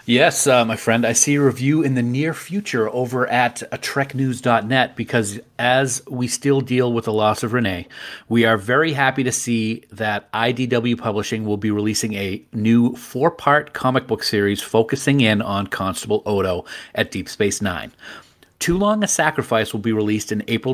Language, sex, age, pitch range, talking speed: English, male, 40-59, 110-135 Hz, 175 wpm